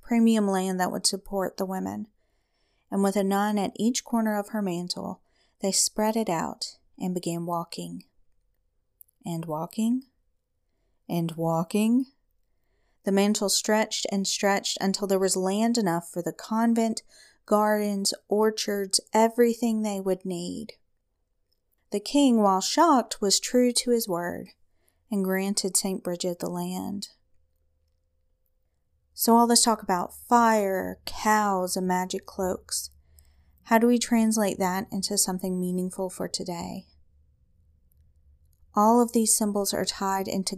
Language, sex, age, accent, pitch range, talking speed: English, female, 30-49, American, 170-210 Hz, 130 wpm